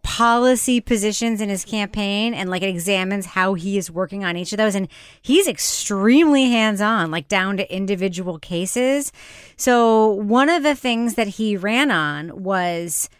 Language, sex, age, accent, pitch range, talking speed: English, female, 30-49, American, 190-255 Hz, 160 wpm